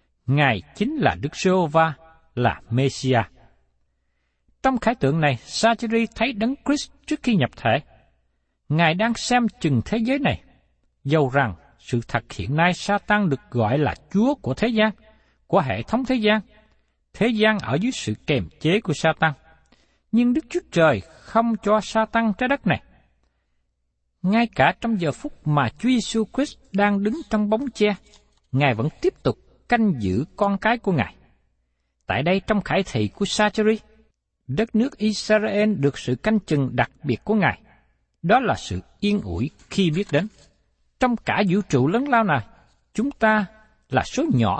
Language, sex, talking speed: Vietnamese, male, 170 wpm